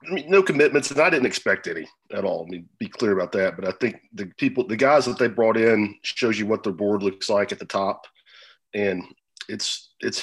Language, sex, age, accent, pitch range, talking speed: English, male, 40-59, American, 100-110 Hz, 245 wpm